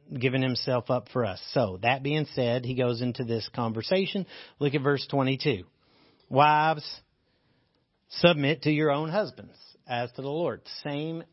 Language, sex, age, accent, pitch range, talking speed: English, male, 40-59, American, 125-155 Hz, 155 wpm